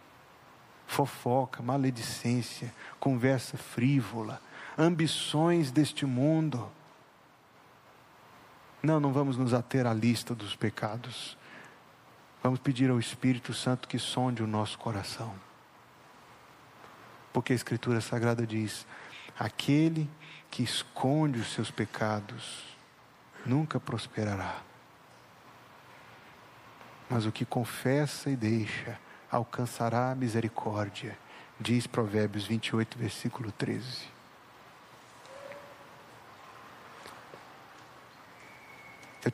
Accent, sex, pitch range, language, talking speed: Brazilian, male, 115-135 Hz, Portuguese, 80 wpm